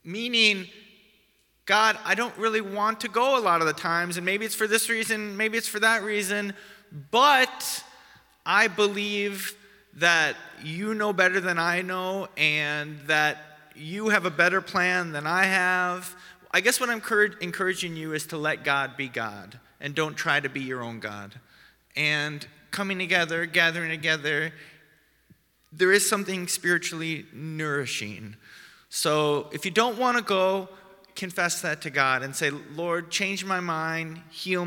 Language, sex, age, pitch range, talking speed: English, male, 30-49, 150-195 Hz, 160 wpm